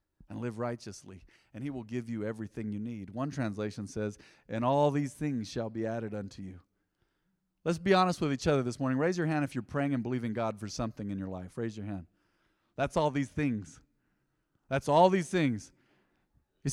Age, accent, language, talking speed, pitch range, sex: 40-59, American, English, 205 wpm, 110-145 Hz, male